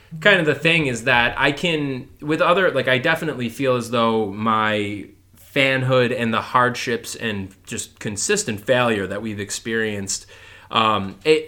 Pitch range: 105-145 Hz